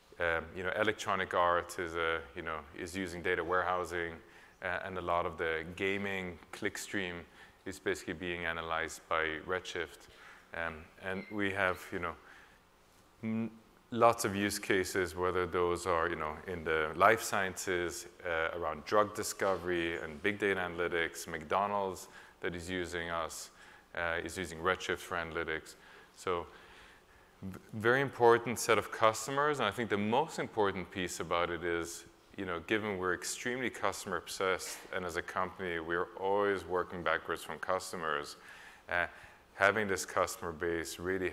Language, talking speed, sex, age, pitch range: English, 150 wpm, male, 30-49, 85-110 Hz